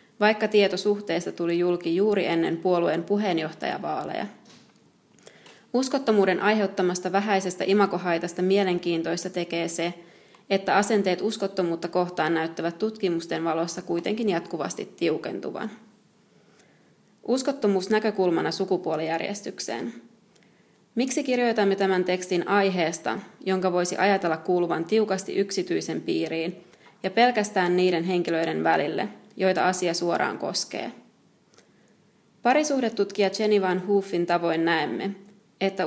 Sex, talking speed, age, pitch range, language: female, 95 wpm, 20-39, 175-210 Hz, Finnish